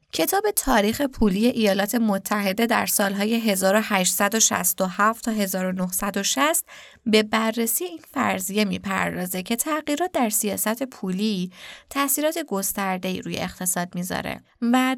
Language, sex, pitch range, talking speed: Persian, female, 190-245 Hz, 105 wpm